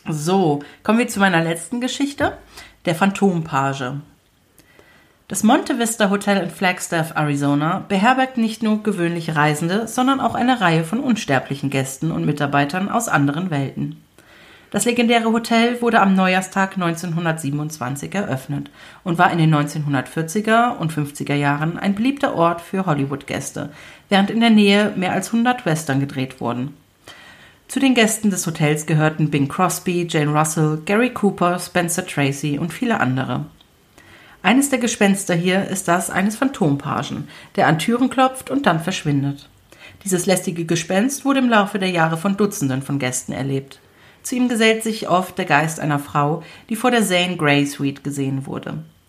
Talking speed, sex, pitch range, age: 155 wpm, female, 145-210 Hz, 40-59